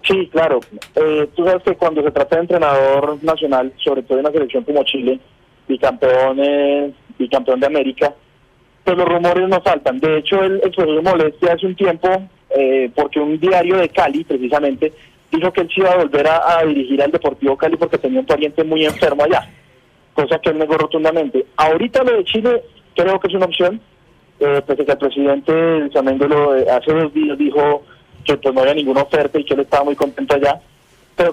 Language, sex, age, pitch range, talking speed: Spanish, male, 30-49, 140-165 Hz, 195 wpm